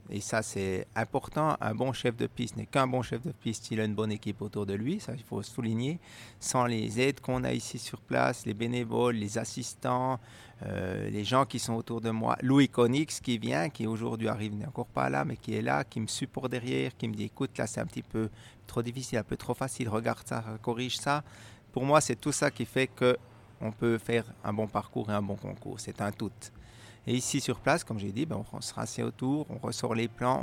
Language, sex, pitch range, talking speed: French, male, 110-130 Hz, 240 wpm